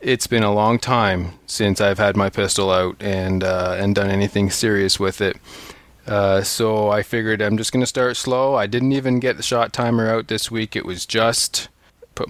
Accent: American